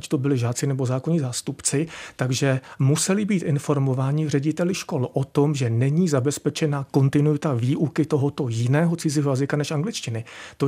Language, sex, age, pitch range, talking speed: Czech, male, 40-59, 130-160 Hz, 150 wpm